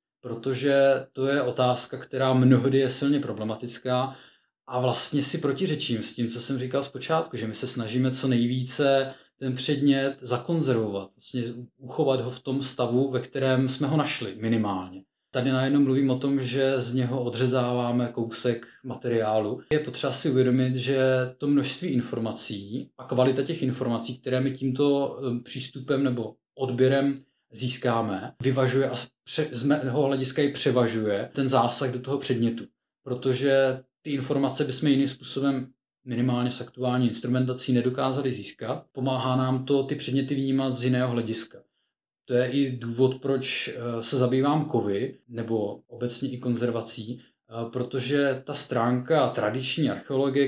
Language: Czech